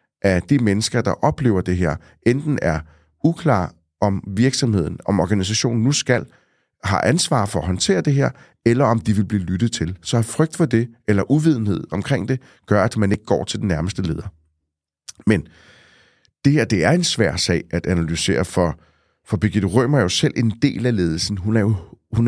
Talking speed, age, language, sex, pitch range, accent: 195 wpm, 30-49, Danish, male, 95-135 Hz, native